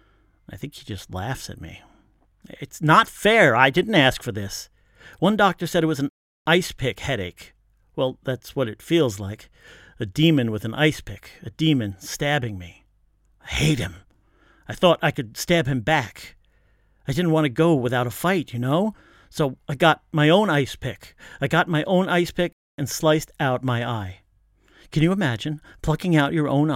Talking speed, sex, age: 190 wpm, male, 50-69